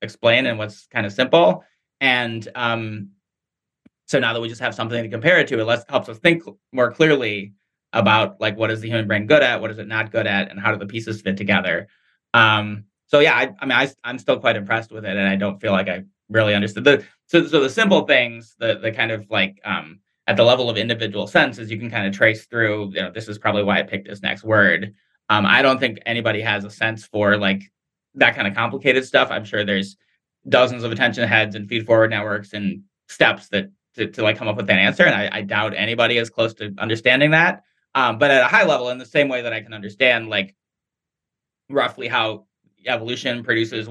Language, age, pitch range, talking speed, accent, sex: English, 30-49, 105-115 Hz, 230 wpm, American, male